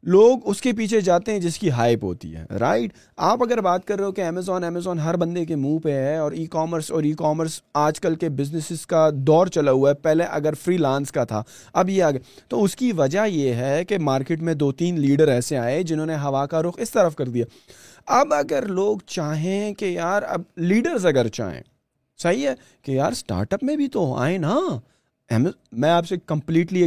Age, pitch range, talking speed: 30-49, 140-180 Hz, 225 wpm